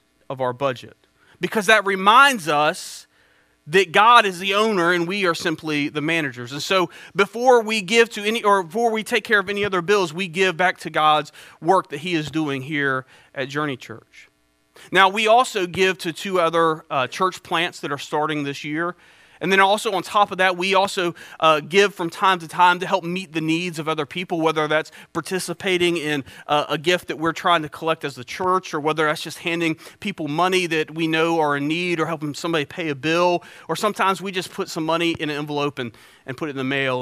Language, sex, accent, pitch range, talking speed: English, male, American, 155-200 Hz, 220 wpm